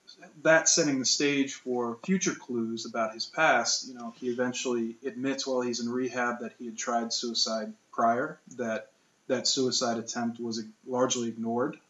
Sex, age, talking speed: male, 20-39, 160 wpm